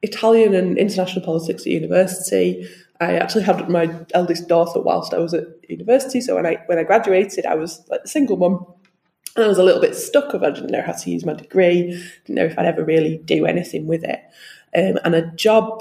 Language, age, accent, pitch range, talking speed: English, 20-39, British, 170-210 Hz, 225 wpm